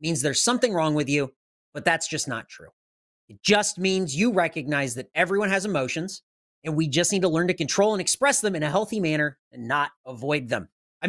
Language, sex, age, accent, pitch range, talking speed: English, male, 30-49, American, 145-195 Hz, 215 wpm